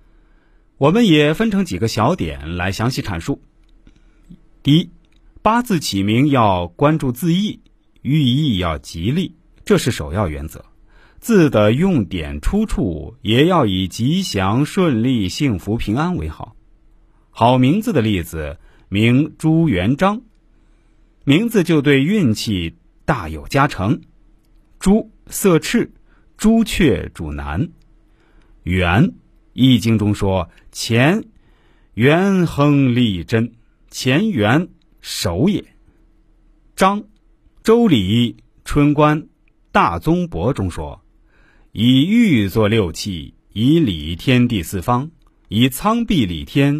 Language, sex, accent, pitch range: Chinese, male, native, 100-160 Hz